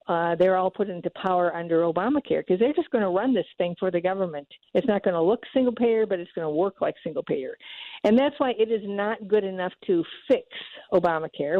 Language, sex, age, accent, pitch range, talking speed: English, female, 50-69, American, 190-235 Hz, 220 wpm